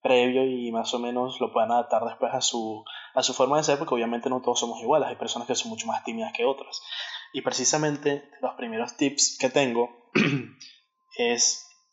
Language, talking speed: Spanish, 195 wpm